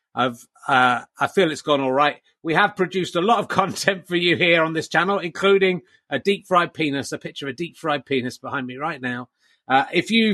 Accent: British